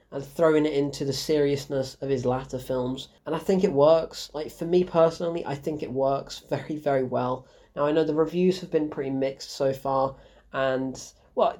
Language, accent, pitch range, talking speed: English, British, 140-195 Hz, 200 wpm